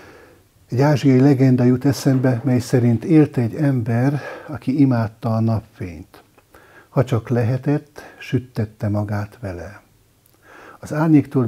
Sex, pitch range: male, 105-135 Hz